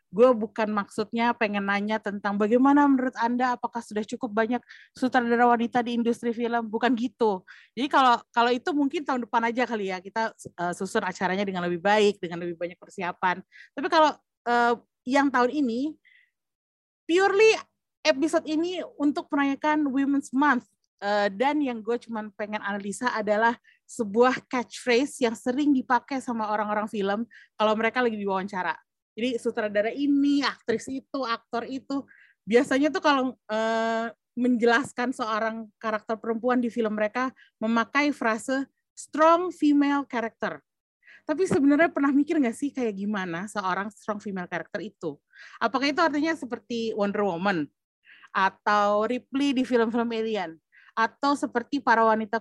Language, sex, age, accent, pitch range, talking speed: Indonesian, female, 30-49, native, 215-275 Hz, 145 wpm